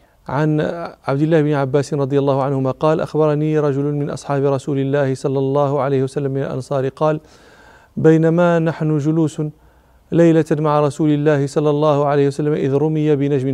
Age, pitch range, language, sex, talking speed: 40-59, 140-160 Hz, Arabic, male, 160 wpm